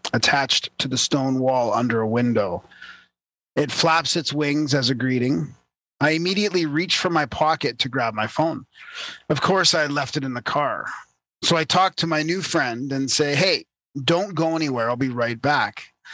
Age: 30-49